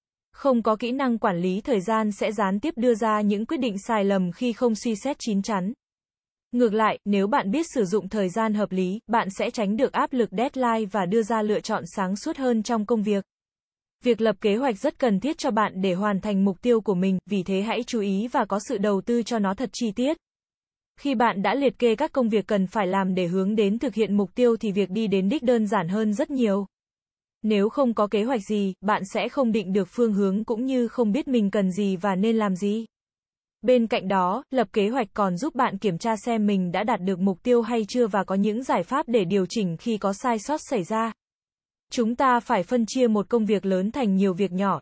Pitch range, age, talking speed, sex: 200-245 Hz, 20-39, 245 wpm, female